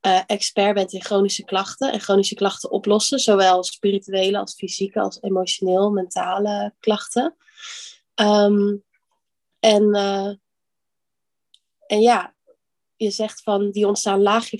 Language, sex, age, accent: Dutch, female, 20-39, Dutch